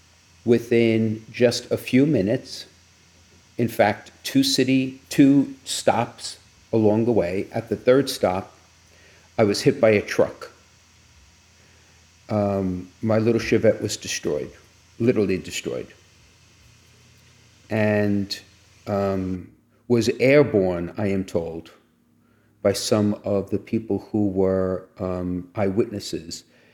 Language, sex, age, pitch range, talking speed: English, male, 50-69, 95-115 Hz, 110 wpm